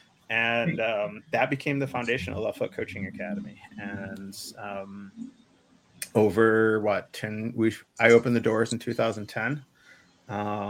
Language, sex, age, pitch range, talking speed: English, male, 30-49, 100-125 Hz, 130 wpm